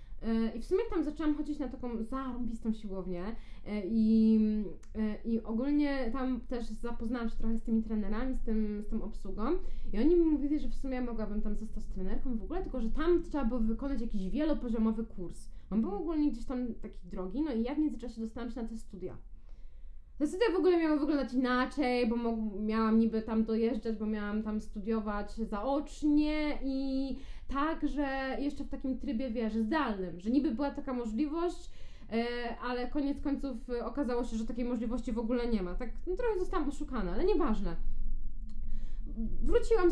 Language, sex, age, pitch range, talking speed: Polish, female, 20-39, 220-285 Hz, 180 wpm